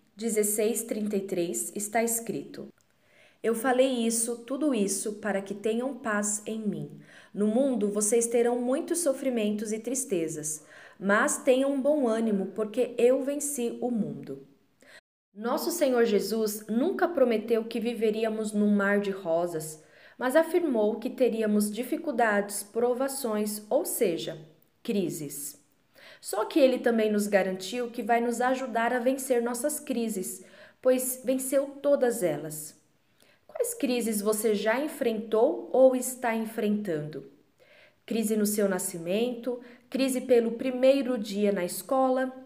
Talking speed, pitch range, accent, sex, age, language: 120 wpm, 205-255 Hz, Brazilian, female, 20-39, Portuguese